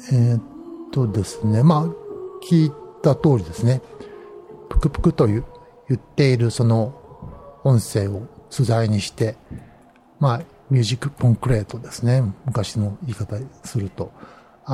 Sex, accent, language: male, native, Japanese